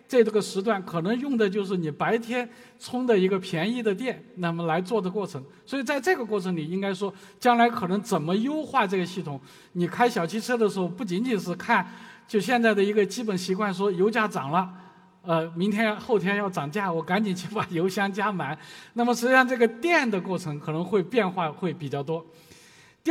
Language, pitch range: Chinese, 175-225 Hz